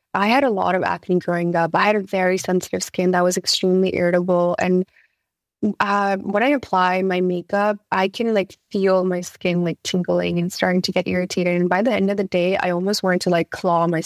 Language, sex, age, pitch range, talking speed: English, female, 20-39, 175-195 Hz, 220 wpm